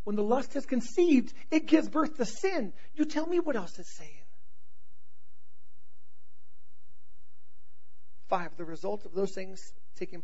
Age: 50-69